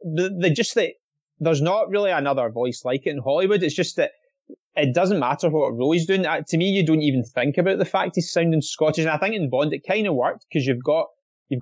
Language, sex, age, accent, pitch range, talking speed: English, male, 20-39, British, 135-190 Hz, 255 wpm